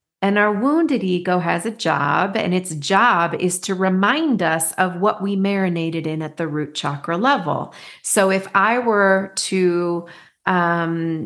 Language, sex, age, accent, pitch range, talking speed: English, female, 40-59, American, 165-210 Hz, 160 wpm